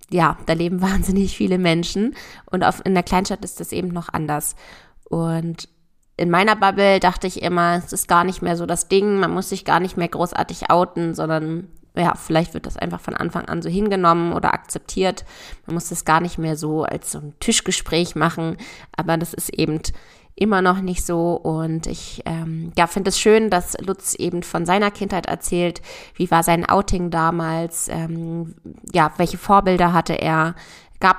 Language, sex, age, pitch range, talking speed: German, female, 20-39, 165-190 Hz, 190 wpm